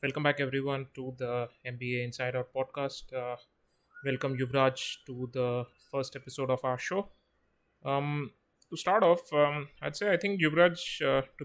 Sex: male